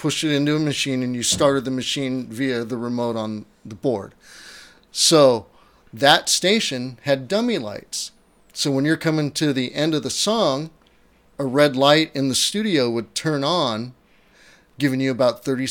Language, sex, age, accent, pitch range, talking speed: English, male, 30-49, American, 120-145 Hz, 170 wpm